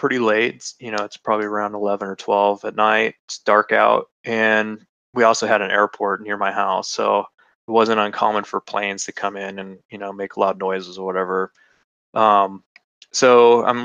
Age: 20-39